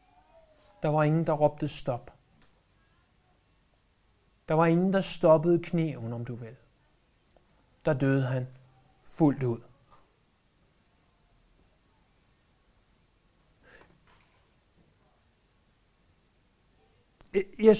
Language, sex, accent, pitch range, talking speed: Danish, male, native, 145-200 Hz, 70 wpm